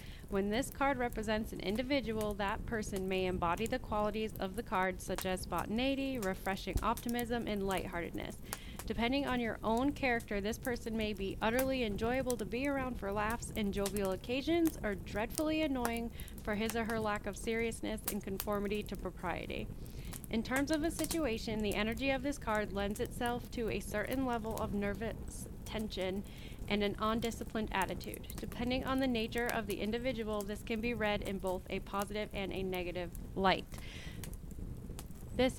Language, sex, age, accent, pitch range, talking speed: English, female, 30-49, American, 185-235 Hz, 165 wpm